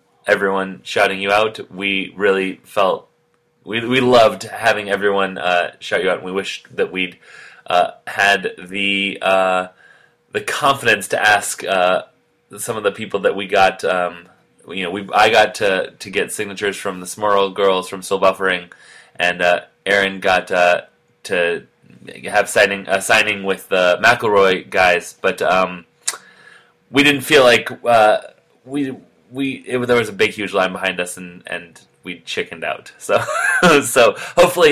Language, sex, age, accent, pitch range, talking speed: English, male, 30-49, American, 95-120 Hz, 160 wpm